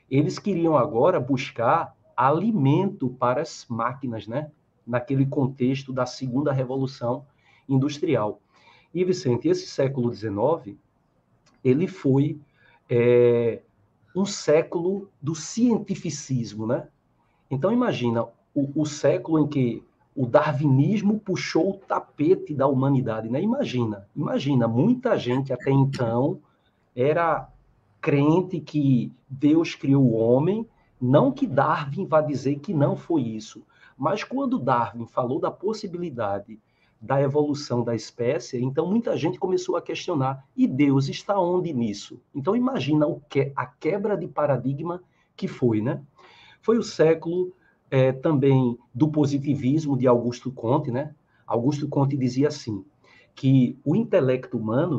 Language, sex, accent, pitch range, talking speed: Portuguese, male, Brazilian, 125-160 Hz, 125 wpm